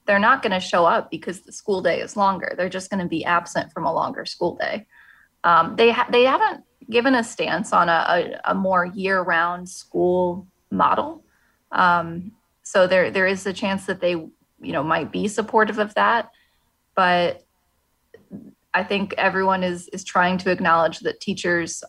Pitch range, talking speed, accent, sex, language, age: 180-210 Hz, 180 wpm, American, female, English, 20-39